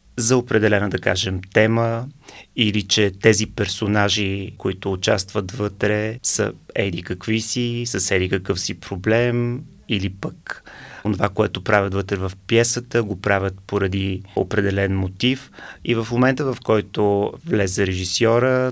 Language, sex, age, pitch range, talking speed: Bulgarian, male, 30-49, 95-115 Hz, 130 wpm